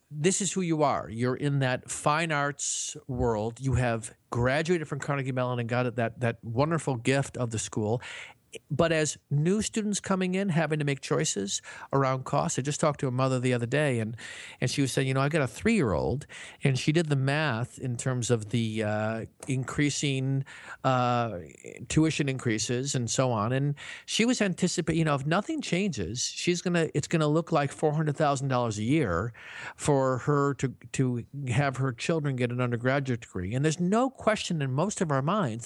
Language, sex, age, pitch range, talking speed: English, male, 50-69, 125-160 Hz, 195 wpm